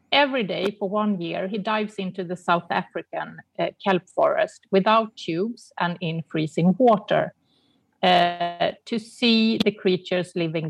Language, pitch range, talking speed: English, 180-215 Hz, 145 wpm